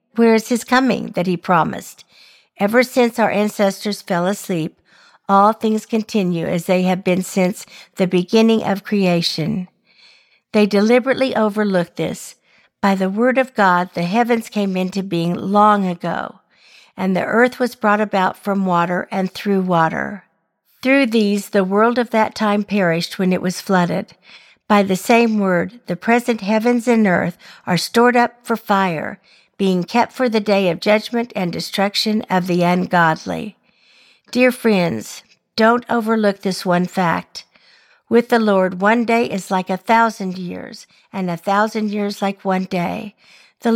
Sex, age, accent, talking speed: female, 50-69, American, 160 wpm